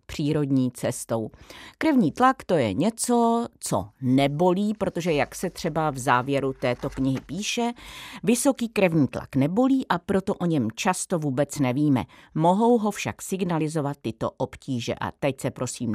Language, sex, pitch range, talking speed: Czech, female, 140-210 Hz, 145 wpm